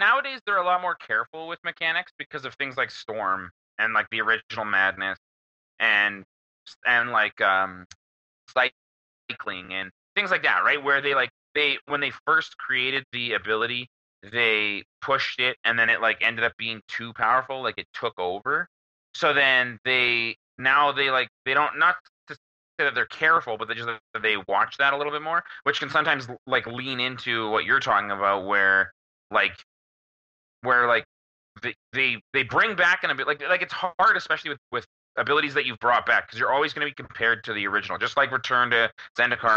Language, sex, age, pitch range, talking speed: English, male, 30-49, 95-130 Hz, 190 wpm